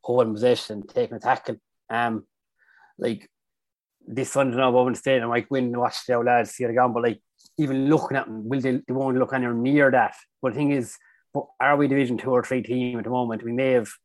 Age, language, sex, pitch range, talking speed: 20-39, English, male, 115-130 Hz, 235 wpm